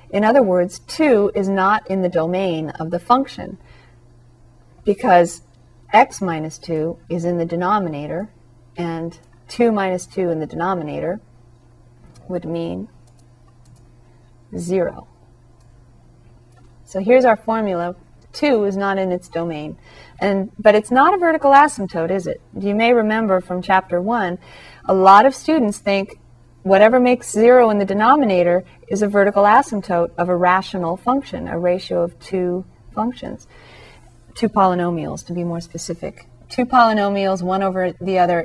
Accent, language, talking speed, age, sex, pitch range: American, English, 140 wpm, 40-59, female, 165-210 Hz